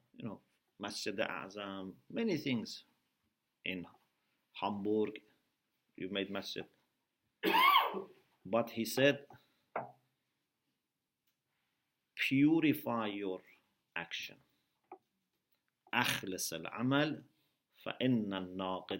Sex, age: male, 50-69